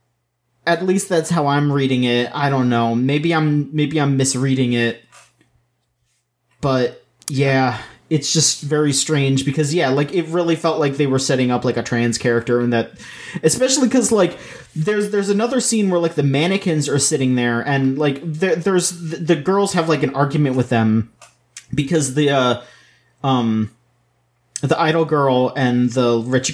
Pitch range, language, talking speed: 120-155 Hz, English, 170 wpm